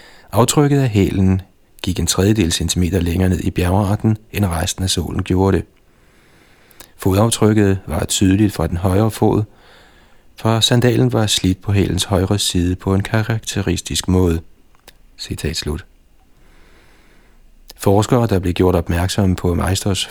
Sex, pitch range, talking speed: male, 90-110 Hz, 130 wpm